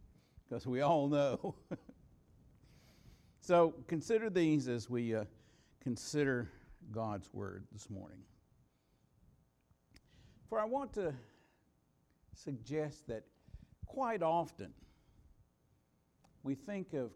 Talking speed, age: 90 wpm, 60-79